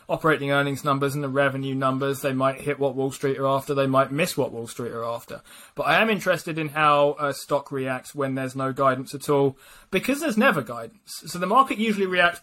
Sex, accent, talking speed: male, British, 225 wpm